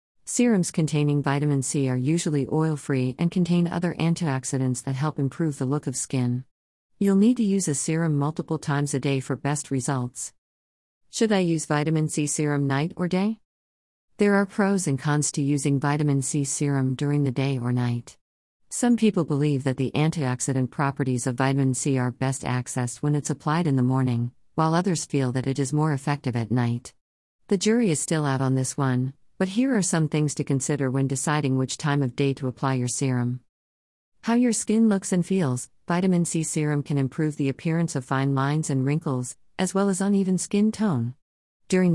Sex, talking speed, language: female, 190 wpm, English